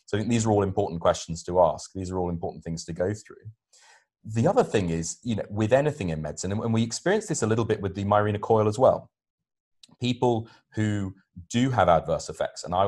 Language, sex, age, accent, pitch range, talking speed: English, male, 30-49, British, 90-110 Hz, 230 wpm